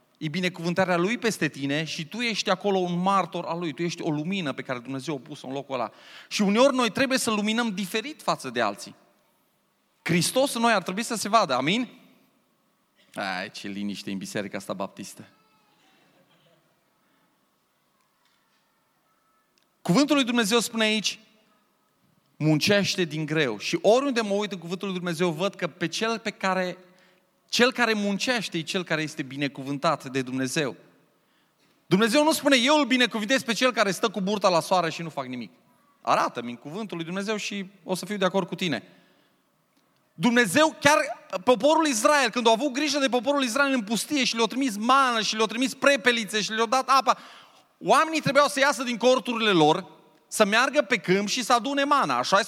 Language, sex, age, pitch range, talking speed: Romanian, male, 30-49, 170-250 Hz, 175 wpm